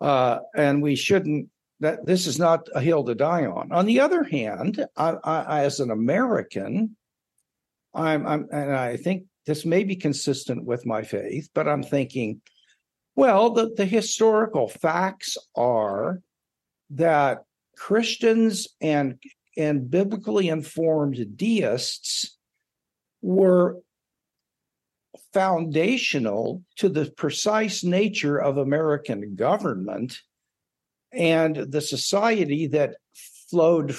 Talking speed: 115 wpm